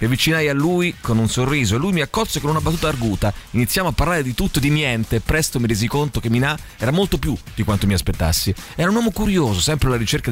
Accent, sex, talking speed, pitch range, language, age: native, male, 250 wpm, 110-155 Hz, Italian, 30-49